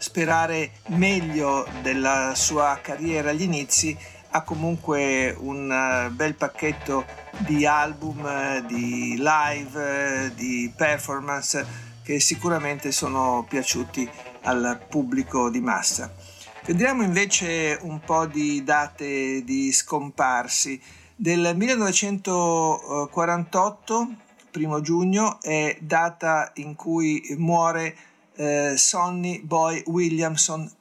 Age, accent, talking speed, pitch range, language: 50-69, native, 90 wpm, 135-165 Hz, Italian